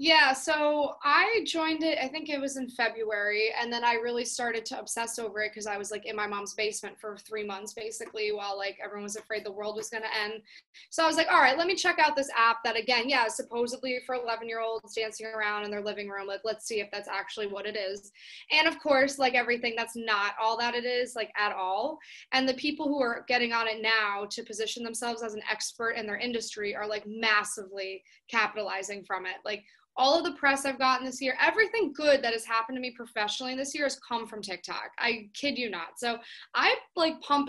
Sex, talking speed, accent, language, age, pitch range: female, 230 wpm, American, English, 20-39, 215-265 Hz